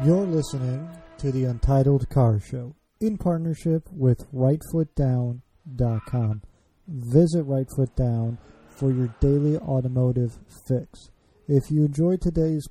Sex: male